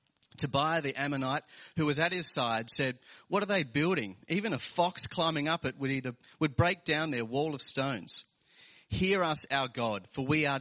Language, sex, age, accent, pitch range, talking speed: English, male, 30-49, Australian, 125-155 Hz, 190 wpm